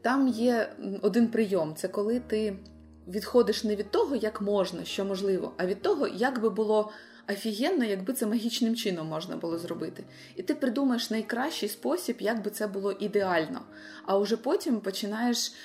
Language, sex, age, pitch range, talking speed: Ukrainian, female, 20-39, 195-230 Hz, 165 wpm